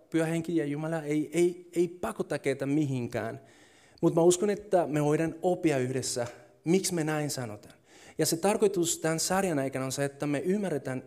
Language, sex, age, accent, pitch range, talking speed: Finnish, male, 30-49, native, 130-170 Hz, 170 wpm